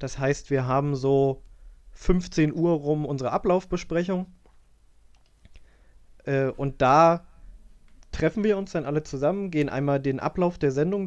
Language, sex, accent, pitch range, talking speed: German, male, German, 130-160 Hz, 130 wpm